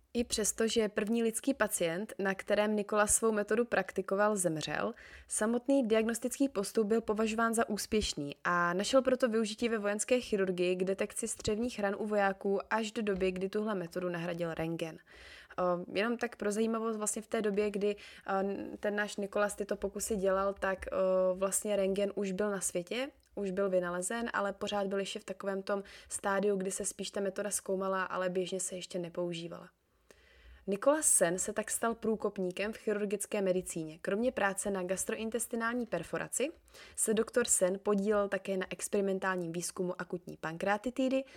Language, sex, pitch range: Czech, female, 185-220 Hz